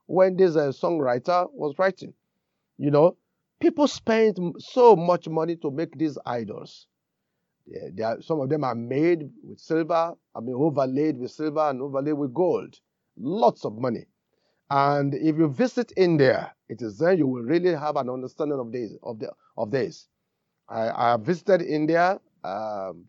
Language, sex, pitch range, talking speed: English, male, 150-195 Hz, 165 wpm